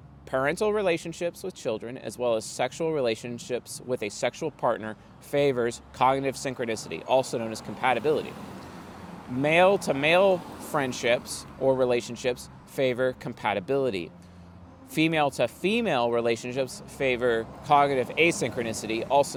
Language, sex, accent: English, male, American